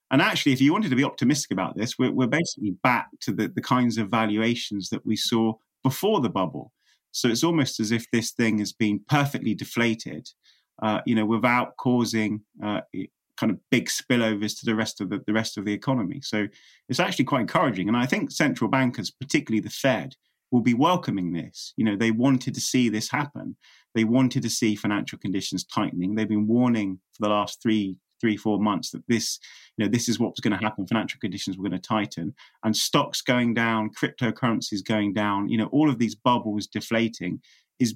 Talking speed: 205 wpm